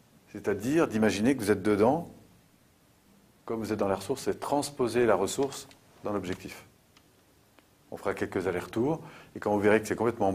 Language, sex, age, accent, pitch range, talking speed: French, male, 40-59, French, 95-130 Hz, 170 wpm